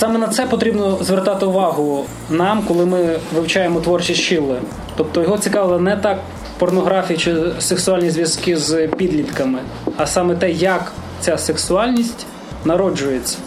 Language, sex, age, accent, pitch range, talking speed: Ukrainian, male, 20-39, native, 145-180 Hz, 135 wpm